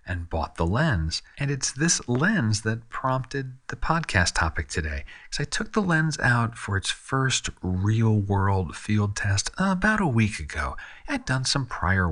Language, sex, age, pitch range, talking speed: English, male, 40-59, 85-115 Hz, 170 wpm